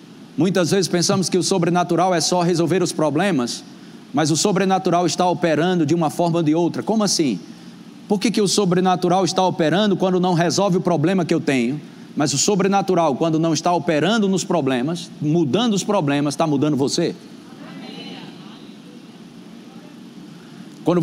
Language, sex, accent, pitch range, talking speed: Portuguese, male, Brazilian, 160-200 Hz, 155 wpm